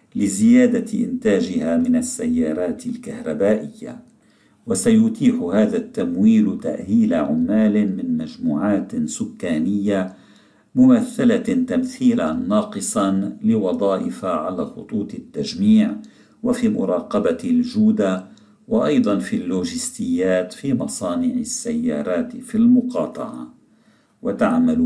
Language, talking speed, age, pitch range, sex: Arabic, 75 wpm, 50-69, 220-245 Hz, male